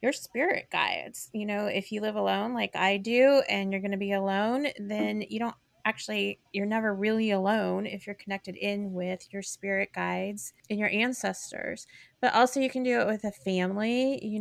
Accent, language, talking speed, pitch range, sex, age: American, English, 195 wpm, 195-225 Hz, female, 30-49